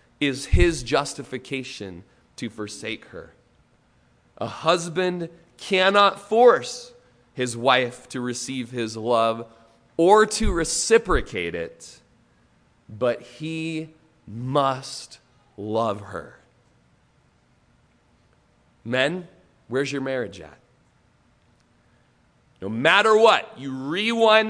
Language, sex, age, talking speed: English, male, 30-49, 85 wpm